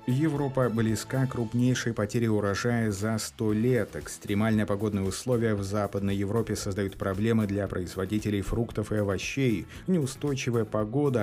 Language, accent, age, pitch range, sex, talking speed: Russian, native, 30-49, 100-120 Hz, male, 130 wpm